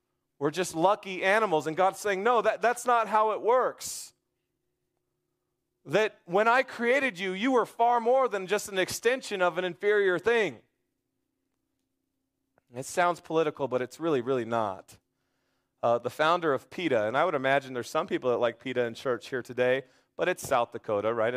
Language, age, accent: English, 30-49, American